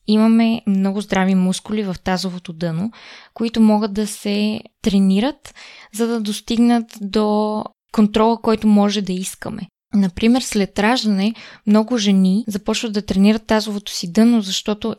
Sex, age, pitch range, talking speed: female, 20-39, 195-225 Hz, 130 wpm